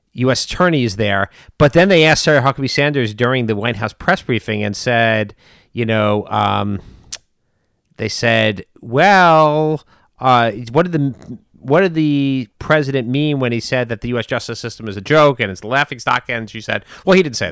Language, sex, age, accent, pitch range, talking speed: English, male, 40-59, American, 110-140 Hz, 190 wpm